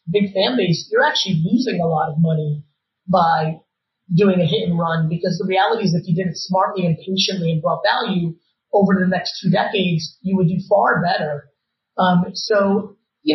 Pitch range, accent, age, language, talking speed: 165-195 Hz, American, 30-49, English, 195 wpm